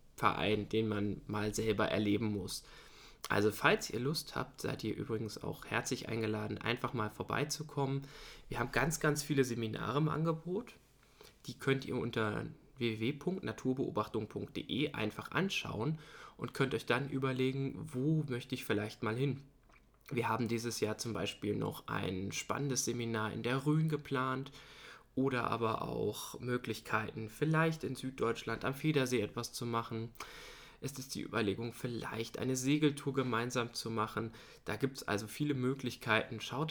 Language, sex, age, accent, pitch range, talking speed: German, male, 20-39, German, 110-140 Hz, 145 wpm